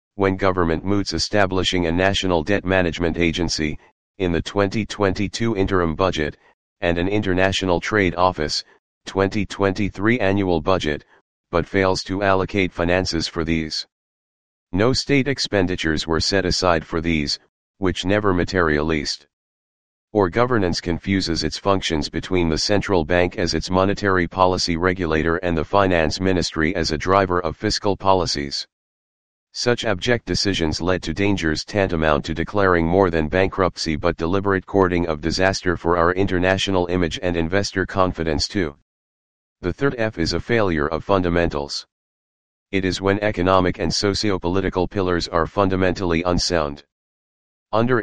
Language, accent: English, American